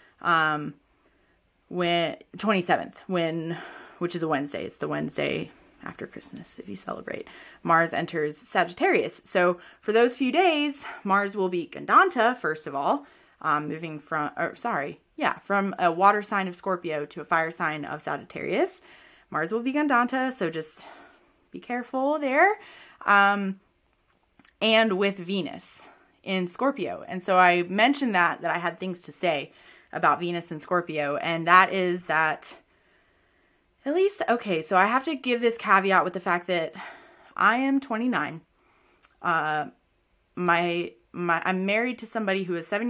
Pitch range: 165-235 Hz